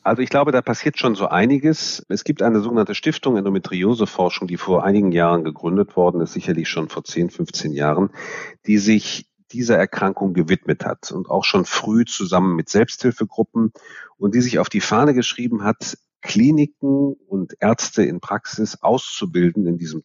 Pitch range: 95-120 Hz